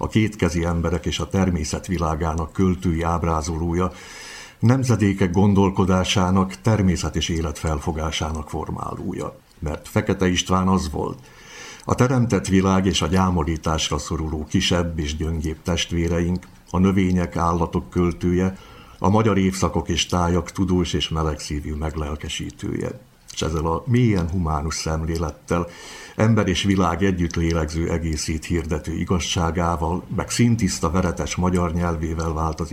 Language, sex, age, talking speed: Hungarian, male, 60-79, 120 wpm